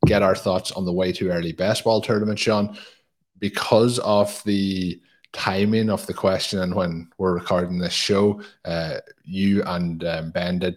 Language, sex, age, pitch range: English, male, 20-39, 90-100 Hz